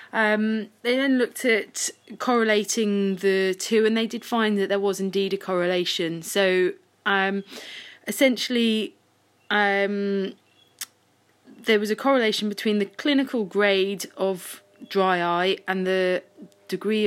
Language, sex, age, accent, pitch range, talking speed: English, female, 20-39, British, 175-215 Hz, 125 wpm